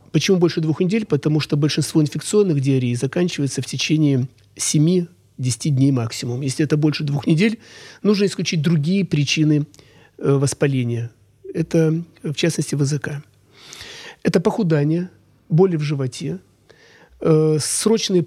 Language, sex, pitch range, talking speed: Russian, male, 135-180 Hz, 115 wpm